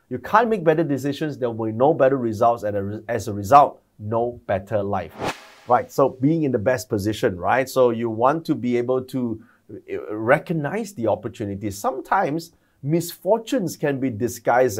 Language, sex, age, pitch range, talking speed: English, male, 30-49, 105-135 Hz, 165 wpm